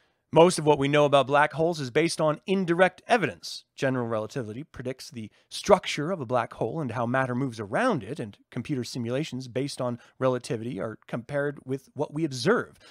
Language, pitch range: English, 125-185 Hz